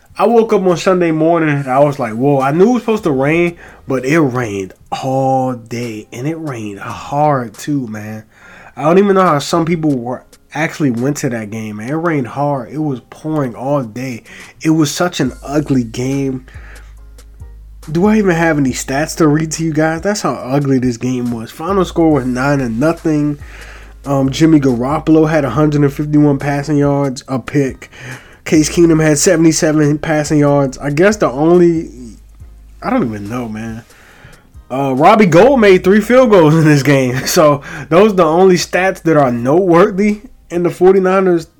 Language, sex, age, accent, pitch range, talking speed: English, male, 20-39, American, 130-165 Hz, 175 wpm